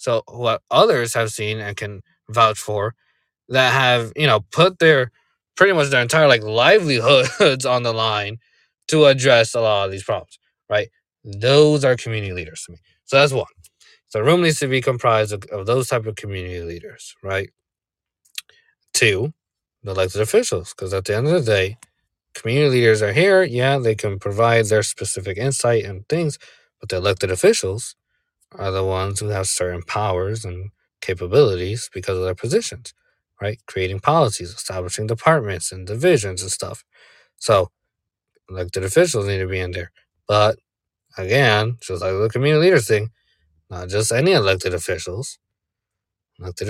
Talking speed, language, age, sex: 165 wpm, English, 20-39, male